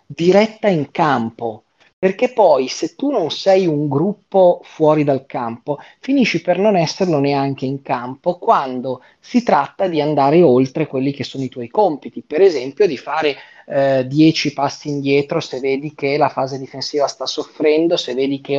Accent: native